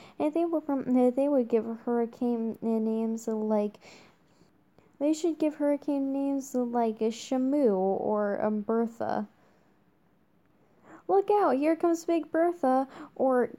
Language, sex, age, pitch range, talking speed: English, female, 10-29, 220-265 Hz, 125 wpm